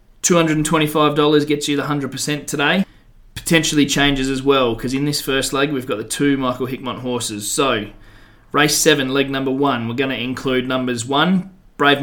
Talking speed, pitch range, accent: 170 wpm, 125-145 Hz, Australian